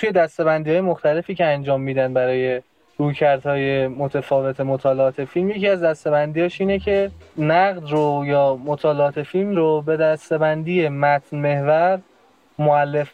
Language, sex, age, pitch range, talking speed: Persian, male, 20-39, 140-180 Hz, 130 wpm